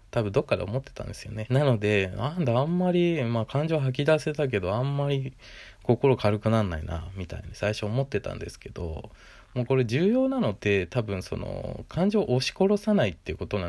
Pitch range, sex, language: 95-125 Hz, male, Japanese